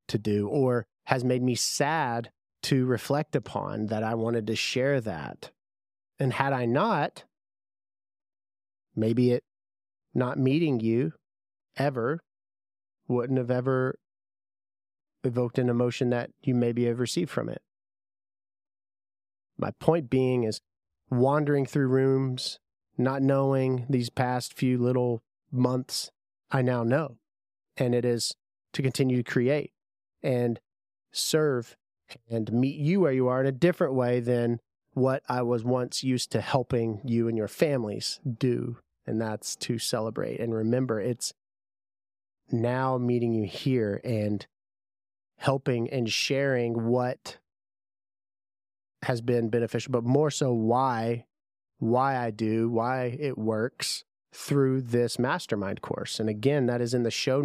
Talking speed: 135 wpm